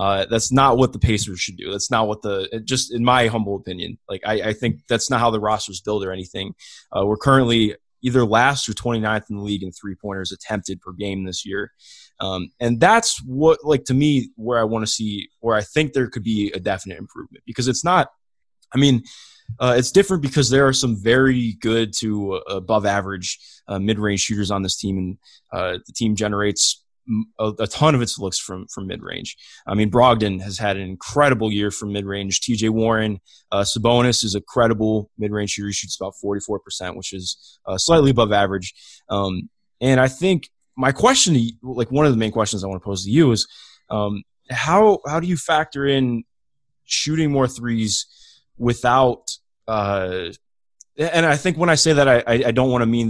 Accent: American